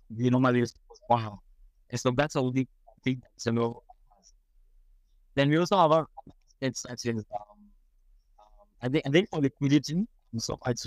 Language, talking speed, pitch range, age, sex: English, 105 wpm, 110-135 Hz, 60-79, male